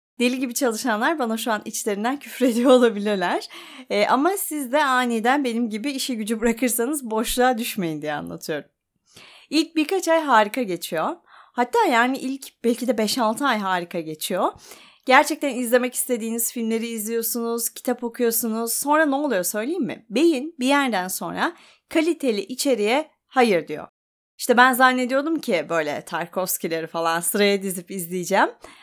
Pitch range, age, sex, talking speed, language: 215-295 Hz, 30-49, female, 140 wpm, Turkish